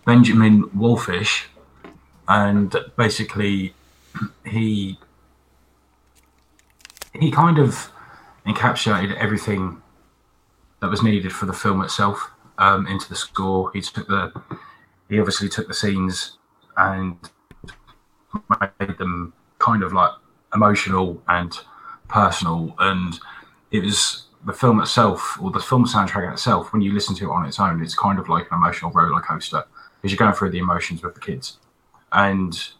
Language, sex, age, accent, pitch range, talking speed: English, male, 30-49, British, 95-105 Hz, 135 wpm